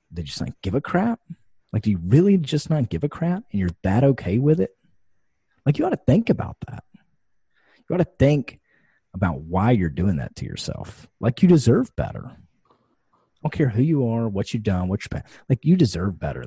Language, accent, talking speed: English, American, 210 wpm